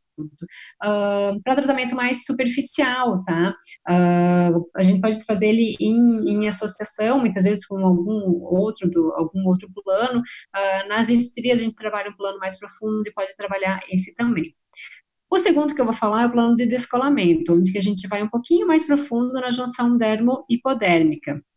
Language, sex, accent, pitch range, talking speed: Portuguese, female, Brazilian, 190-265 Hz, 170 wpm